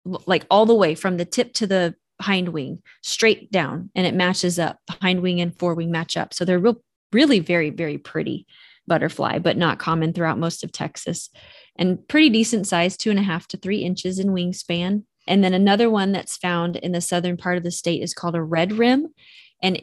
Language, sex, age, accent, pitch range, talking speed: English, female, 20-39, American, 170-200 Hz, 215 wpm